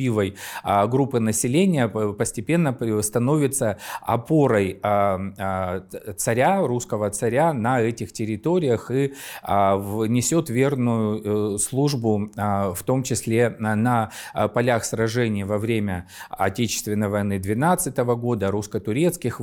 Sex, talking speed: male, 85 wpm